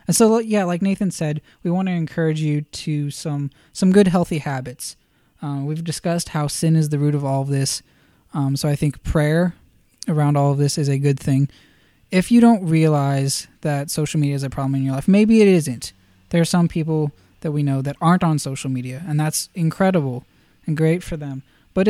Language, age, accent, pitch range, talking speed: English, 20-39, American, 140-175 Hz, 215 wpm